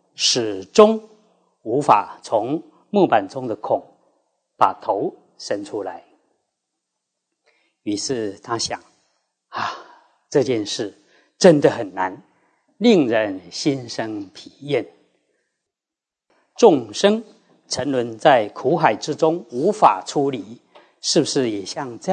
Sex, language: male, Chinese